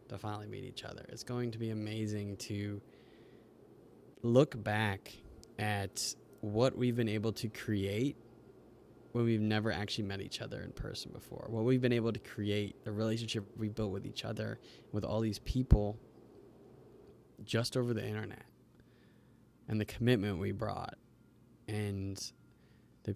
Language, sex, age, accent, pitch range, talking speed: English, male, 20-39, American, 105-120 Hz, 150 wpm